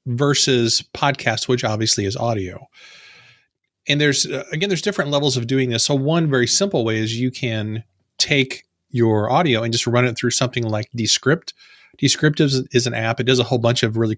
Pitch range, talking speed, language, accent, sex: 115-140 Hz, 195 wpm, English, American, male